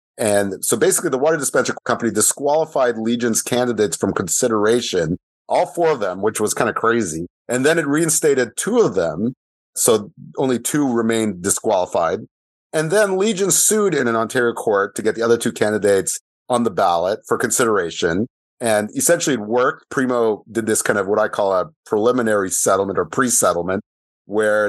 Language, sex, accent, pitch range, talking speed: English, male, American, 105-135 Hz, 170 wpm